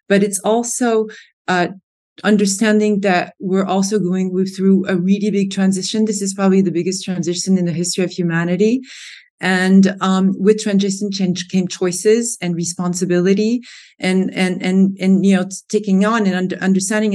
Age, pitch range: 30-49, 165-190 Hz